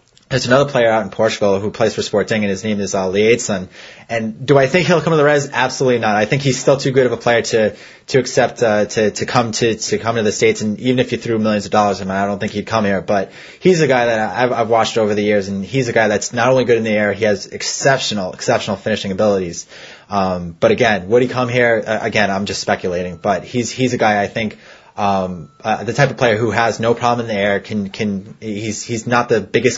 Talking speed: 270 wpm